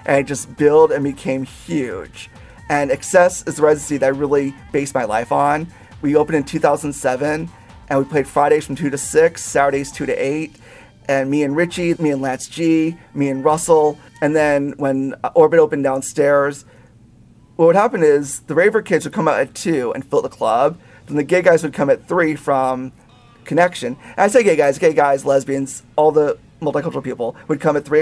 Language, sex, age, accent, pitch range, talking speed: English, male, 30-49, American, 135-160 Hz, 200 wpm